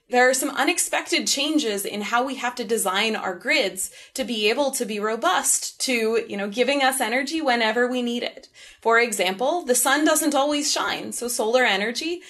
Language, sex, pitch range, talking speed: English, female, 215-285 Hz, 190 wpm